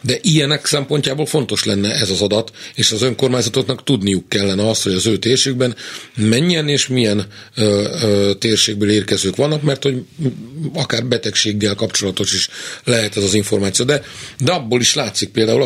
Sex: male